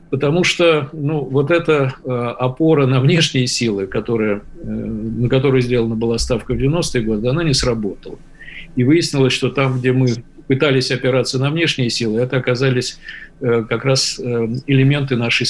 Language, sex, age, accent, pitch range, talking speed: Russian, male, 50-69, native, 120-145 Hz, 145 wpm